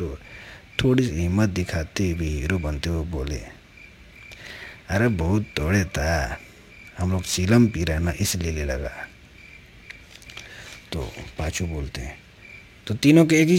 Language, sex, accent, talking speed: Hindi, male, native, 130 wpm